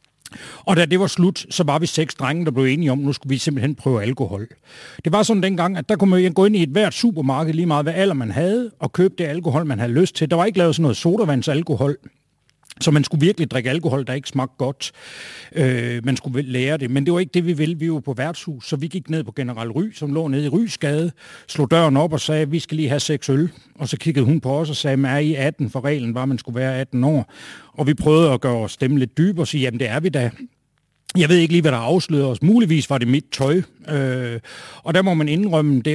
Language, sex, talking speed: Danish, male, 270 wpm